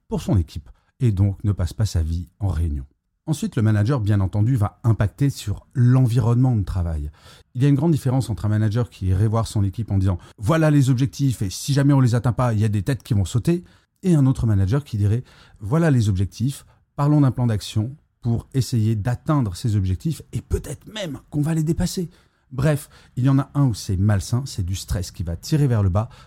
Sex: male